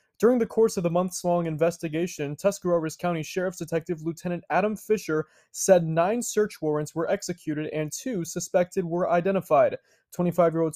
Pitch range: 155-180 Hz